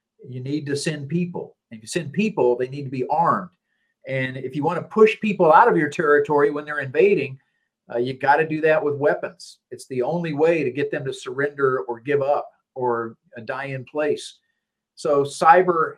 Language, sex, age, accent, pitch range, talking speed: English, male, 50-69, American, 130-170 Hz, 205 wpm